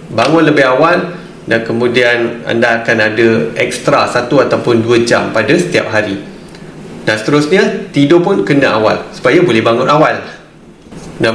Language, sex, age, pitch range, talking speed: Malay, male, 20-39, 125-175 Hz, 145 wpm